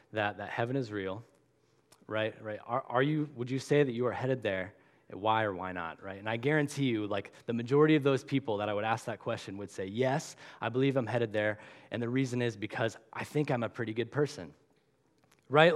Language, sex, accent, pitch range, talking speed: English, male, American, 115-145 Hz, 230 wpm